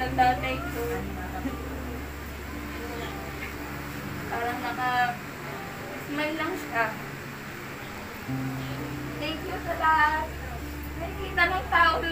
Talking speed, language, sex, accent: 80 wpm, Filipino, female, native